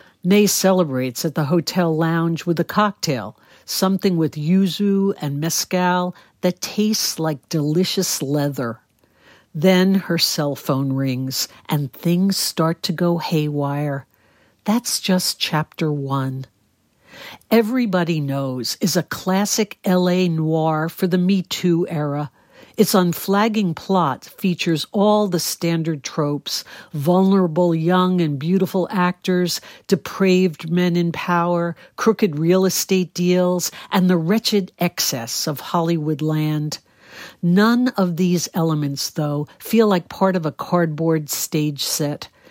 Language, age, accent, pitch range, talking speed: English, 60-79, American, 155-190 Hz, 120 wpm